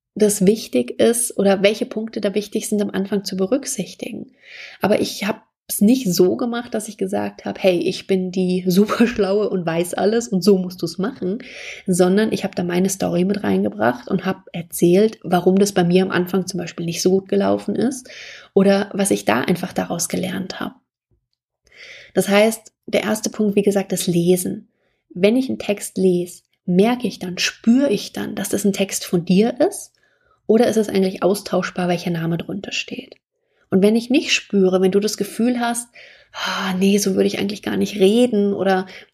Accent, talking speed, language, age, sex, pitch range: German, 195 wpm, German, 30-49, female, 185-225 Hz